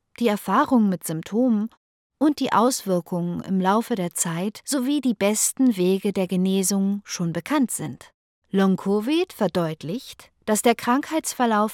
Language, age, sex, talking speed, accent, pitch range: English, 50-69, female, 130 wpm, German, 185-240 Hz